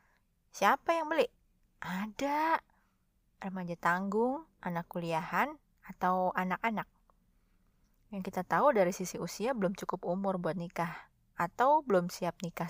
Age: 20-39